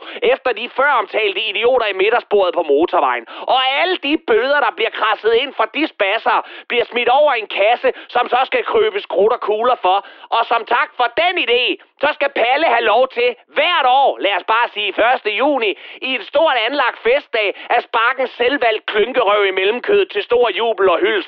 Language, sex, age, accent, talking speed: Danish, male, 30-49, native, 190 wpm